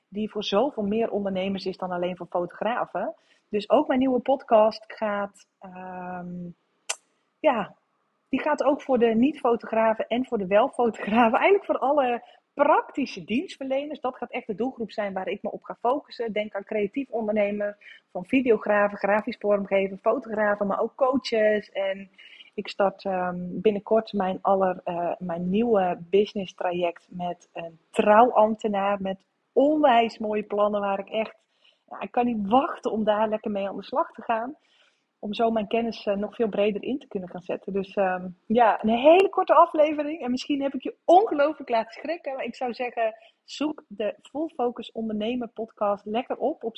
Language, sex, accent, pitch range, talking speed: Dutch, female, Dutch, 200-255 Hz, 165 wpm